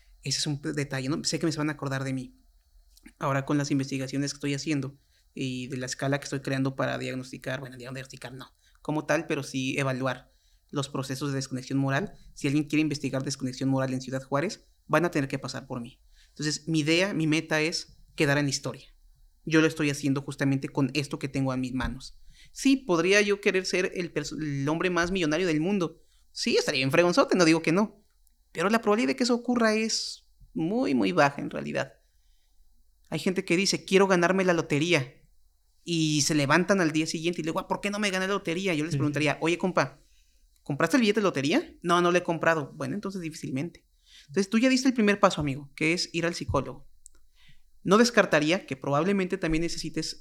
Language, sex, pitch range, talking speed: Spanish, male, 135-170 Hz, 210 wpm